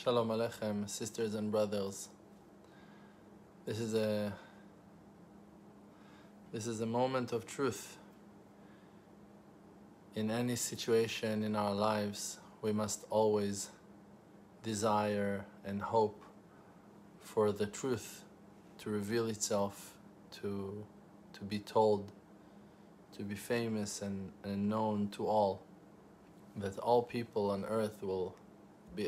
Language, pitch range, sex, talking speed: English, 100-110 Hz, male, 105 wpm